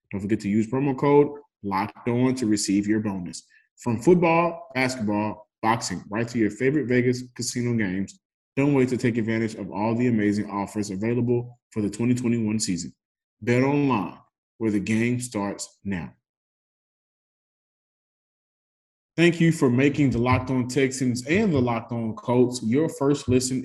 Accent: American